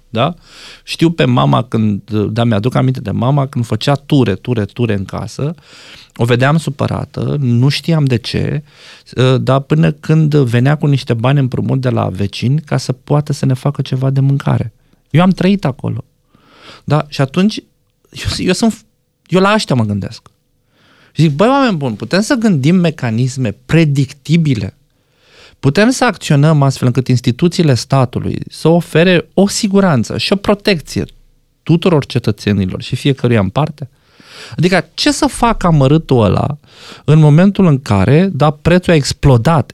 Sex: male